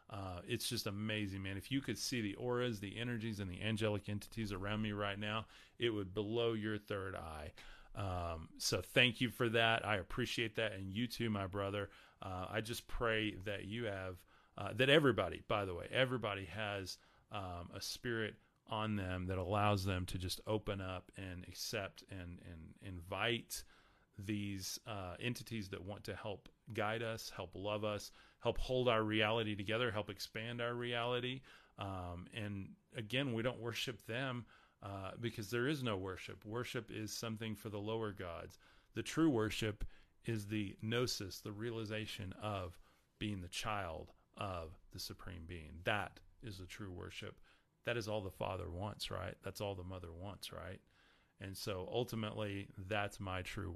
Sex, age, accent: male, 30-49, American